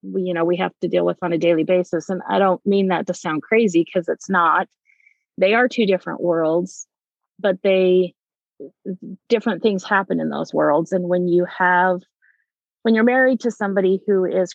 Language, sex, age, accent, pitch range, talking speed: English, female, 30-49, American, 170-195 Hz, 195 wpm